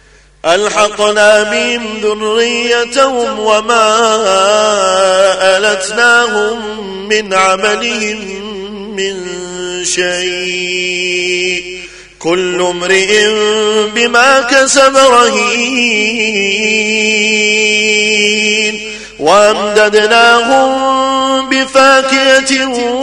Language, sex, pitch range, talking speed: Arabic, male, 210-265 Hz, 40 wpm